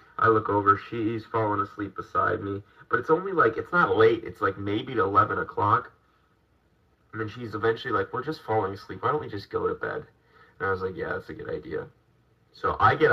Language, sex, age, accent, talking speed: English, male, 30-49, American, 220 wpm